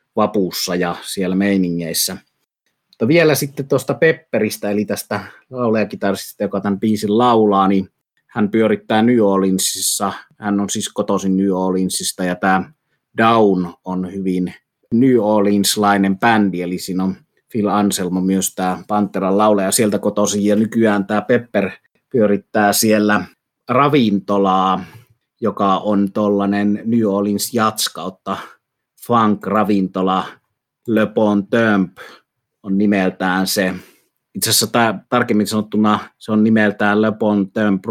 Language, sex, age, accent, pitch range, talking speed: Finnish, male, 30-49, native, 95-110 Hz, 120 wpm